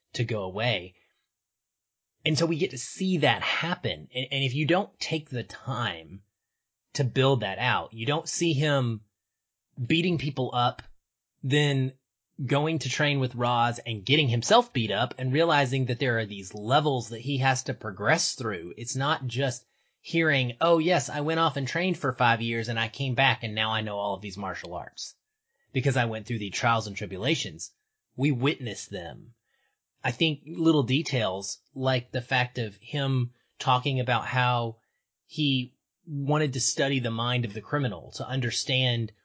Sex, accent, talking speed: male, American, 175 wpm